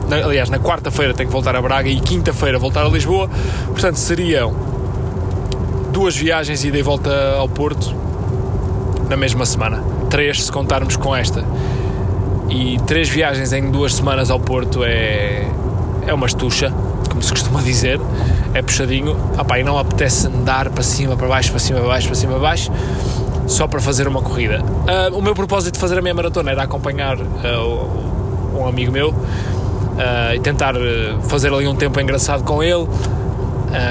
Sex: male